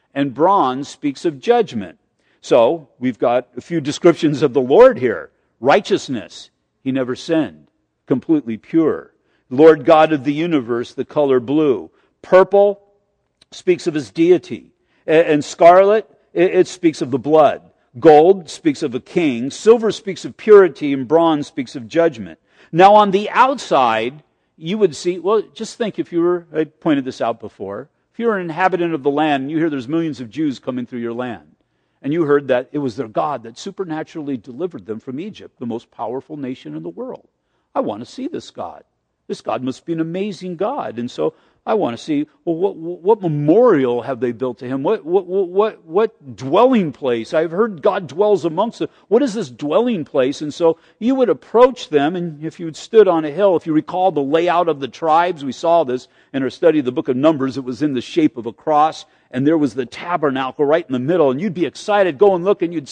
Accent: American